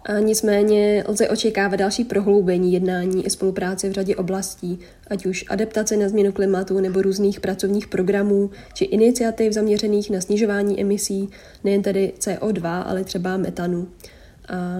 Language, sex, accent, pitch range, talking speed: Czech, female, native, 185-205 Hz, 140 wpm